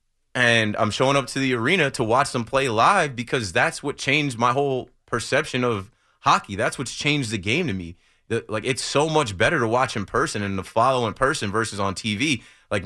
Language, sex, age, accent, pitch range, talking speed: English, male, 30-49, American, 105-135 Hz, 220 wpm